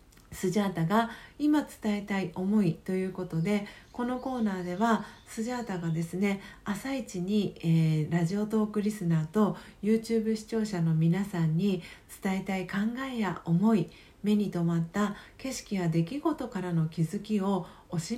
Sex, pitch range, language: female, 165-220 Hz, Japanese